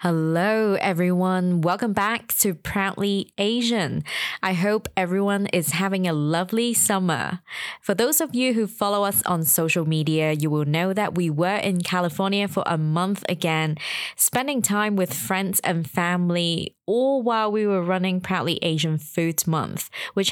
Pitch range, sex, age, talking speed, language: 160-200 Hz, female, 20-39, 155 wpm, English